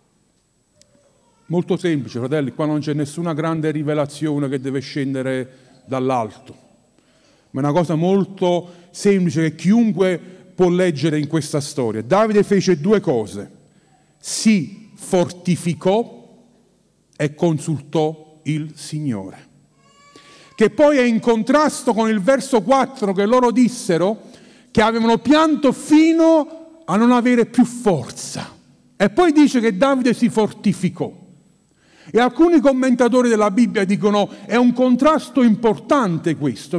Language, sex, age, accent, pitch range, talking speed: Italian, male, 40-59, native, 155-225 Hz, 120 wpm